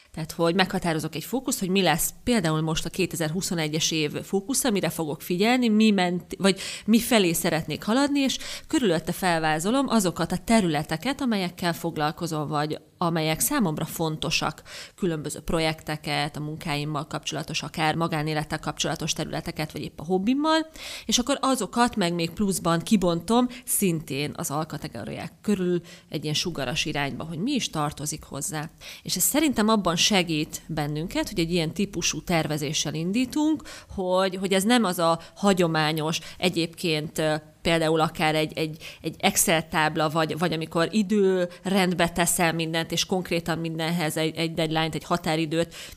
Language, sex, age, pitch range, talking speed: Hungarian, female, 30-49, 155-195 Hz, 140 wpm